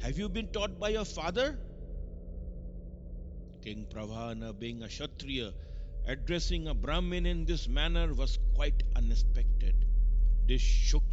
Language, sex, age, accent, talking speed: English, male, 50-69, Indian, 125 wpm